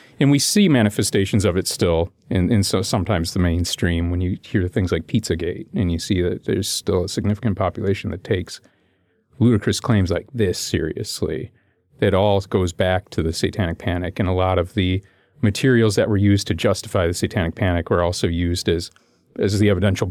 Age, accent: 40-59, American